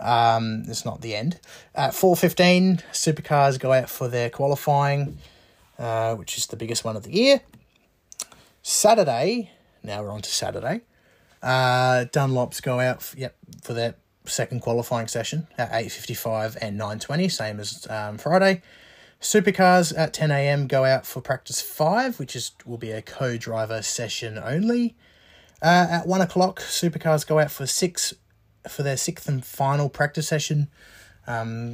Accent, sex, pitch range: Australian, male, 110-150 Hz